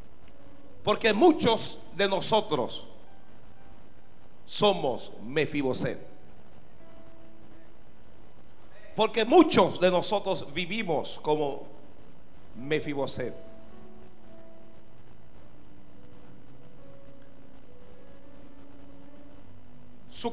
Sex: male